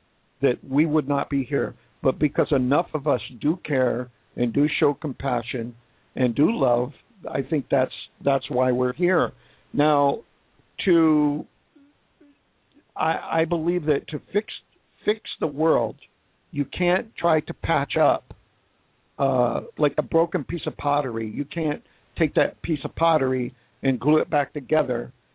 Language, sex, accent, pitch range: English, male, American, 135-160 Hz